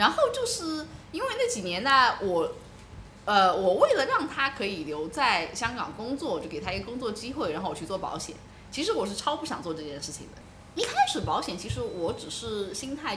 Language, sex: Chinese, female